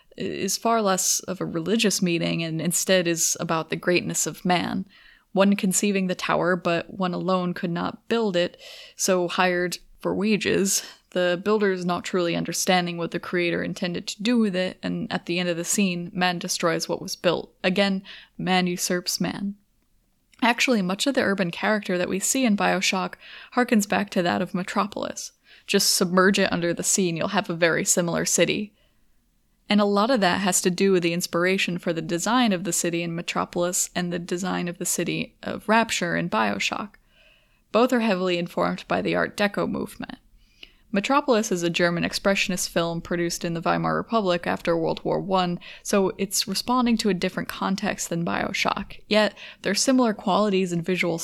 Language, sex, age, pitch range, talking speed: English, female, 20-39, 175-205 Hz, 185 wpm